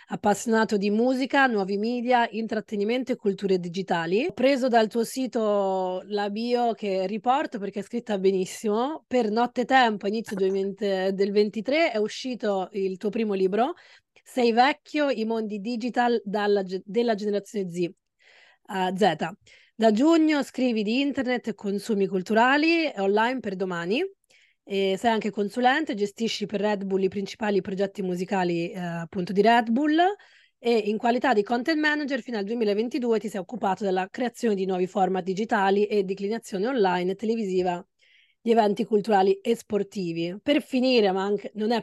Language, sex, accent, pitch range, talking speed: Italian, female, native, 195-245 Hz, 155 wpm